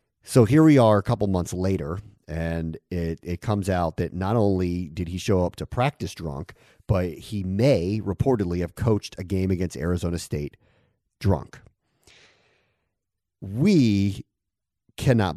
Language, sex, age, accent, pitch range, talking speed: English, male, 30-49, American, 90-115 Hz, 145 wpm